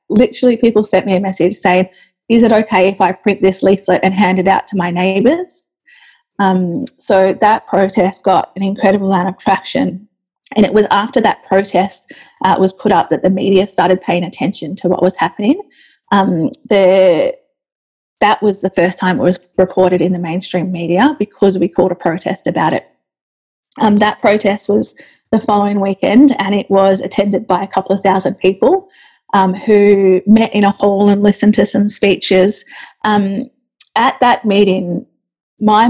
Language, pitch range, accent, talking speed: English, 185-215 Hz, Australian, 175 wpm